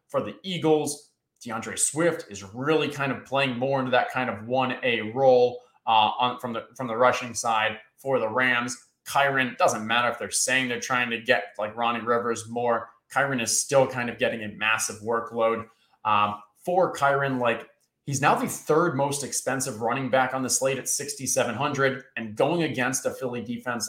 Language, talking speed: English, 190 wpm